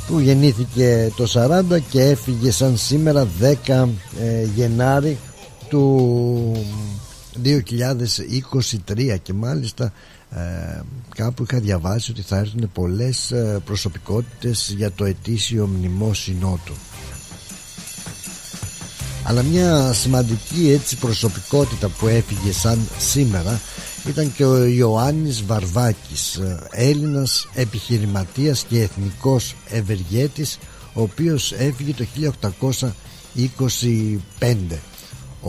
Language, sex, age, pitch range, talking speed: Greek, male, 60-79, 105-130 Hz, 85 wpm